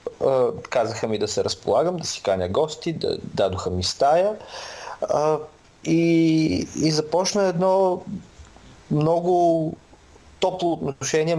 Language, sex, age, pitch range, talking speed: Bulgarian, male, 30-49, 125-165 Hz, 115 wpm